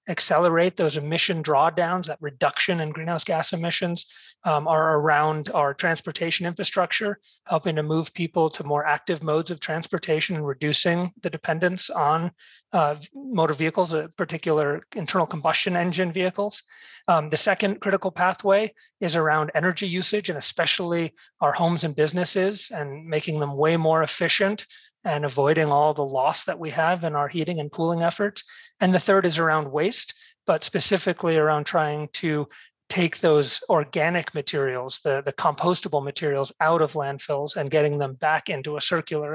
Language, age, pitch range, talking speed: English, 30-49, 155-185 Hz, 160 wpm